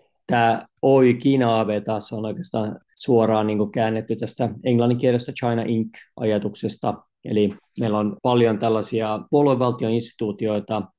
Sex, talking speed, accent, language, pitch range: male, 115 wpm, native, Finnish, 105-115 Hz